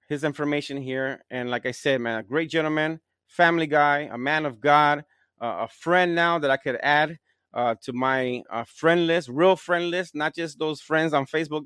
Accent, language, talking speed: American, English, 205 wpm